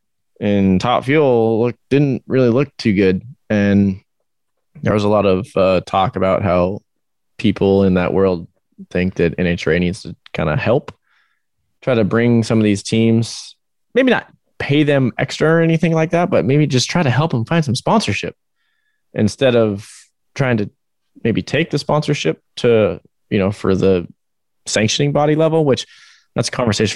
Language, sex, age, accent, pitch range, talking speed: English, male, 20-39, American, 100-140 Hz, 170 wpm